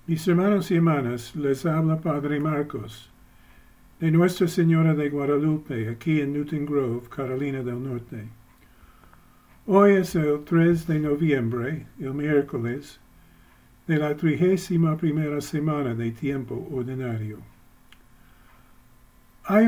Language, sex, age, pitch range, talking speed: English, male, 50-69, 125-160 Hz, 115 wpm